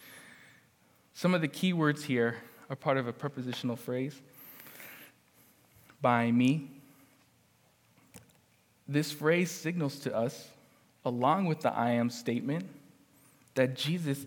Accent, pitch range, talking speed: American, 135-175 Hz, 115 wpm